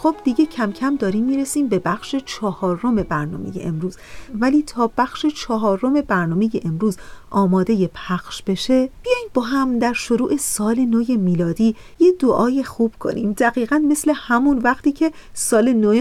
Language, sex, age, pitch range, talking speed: Persian, female, 40-59, 190-245 Hz, 145 wpm